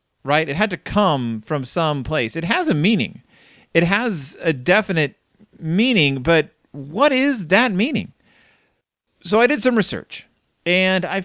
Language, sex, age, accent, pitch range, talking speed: English, male, 40-59, American, 125-195 Hz, 155 wpm